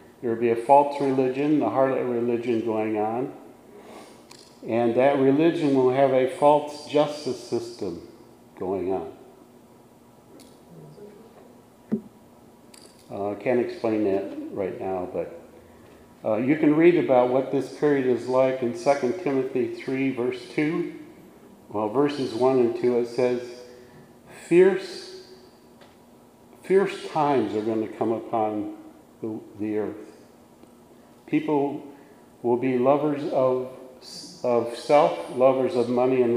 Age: 50-69